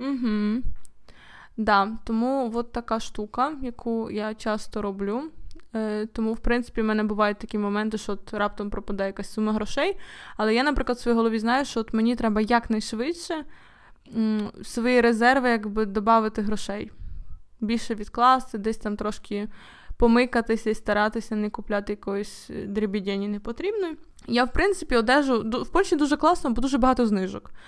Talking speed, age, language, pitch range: 155 wpm, 20-39, Ukrainian, 210-245 Hz